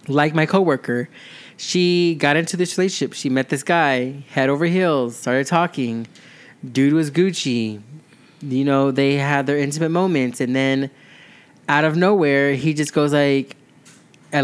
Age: 20-39